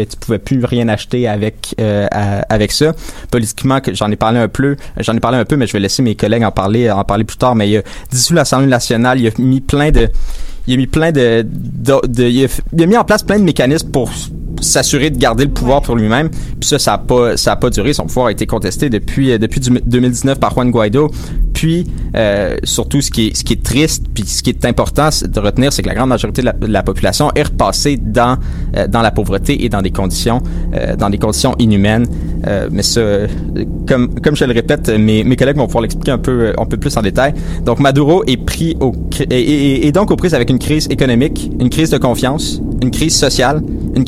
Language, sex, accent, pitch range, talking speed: French, male, Canadian, 105-135 Hz, 230 wpm